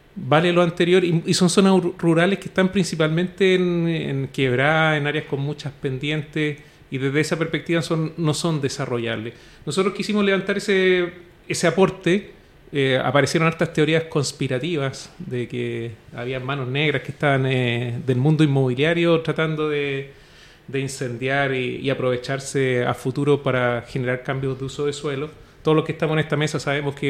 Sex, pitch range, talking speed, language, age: male, 135-160 Hz, 160 wpm, Spanish, 30-49